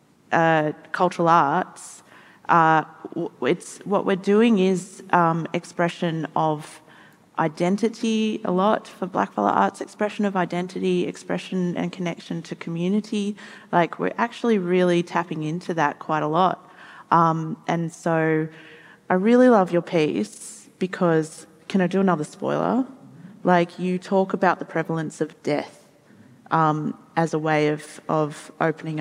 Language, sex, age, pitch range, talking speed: English, female, 30-49, 165-195 Hz, 135 wpm